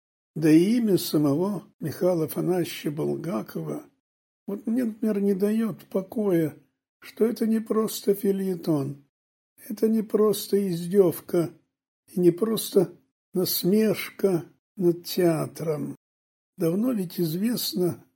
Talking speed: 100 wpm